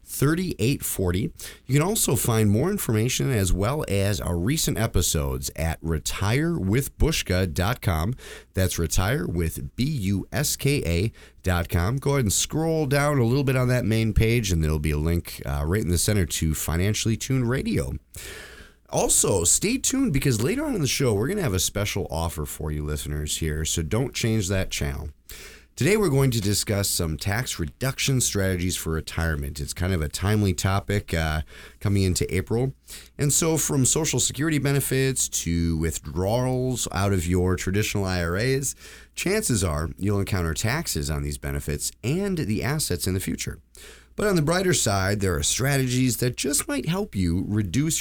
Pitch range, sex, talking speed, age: 80-130 Hz, male, 165 wpm, 30-49